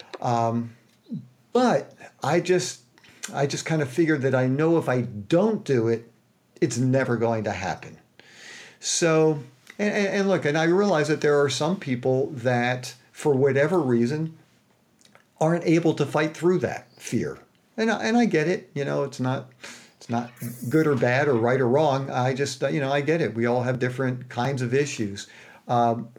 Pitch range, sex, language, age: 120-155 Hz, male, English, 50-69